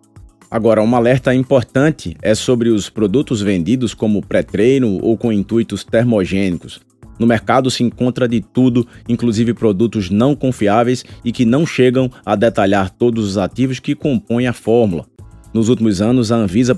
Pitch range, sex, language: 100-120 Hz, male, Portuguese